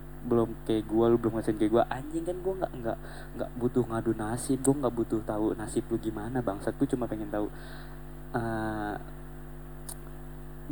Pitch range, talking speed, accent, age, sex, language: 110-130 Hz, 160 wpm, native, 20-39, male, Indonesian